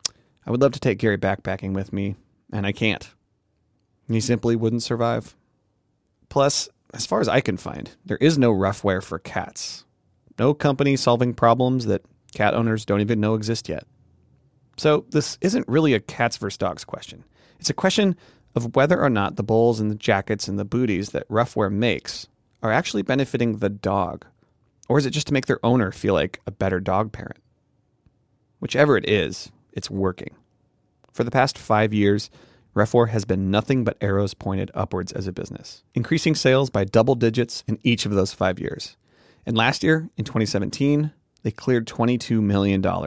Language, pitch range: English, 100-125 Hz